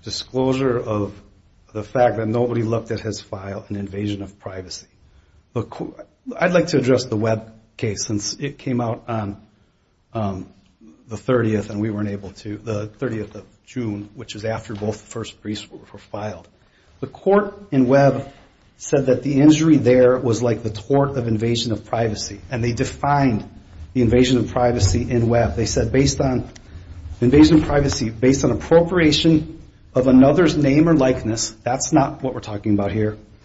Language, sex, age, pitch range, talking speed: English, male, 40-59, 105-140 Hz, 180 wpm